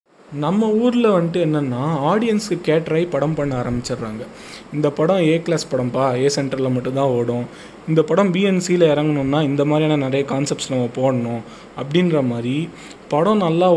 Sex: male